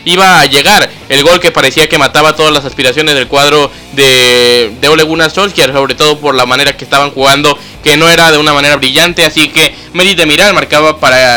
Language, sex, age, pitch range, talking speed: Spanish, male, 20-39, 145-160 Hz, 210 wpm